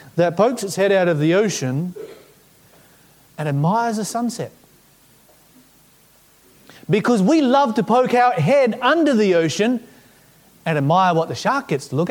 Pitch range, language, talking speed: 140-205 Hz, English, 150 wpm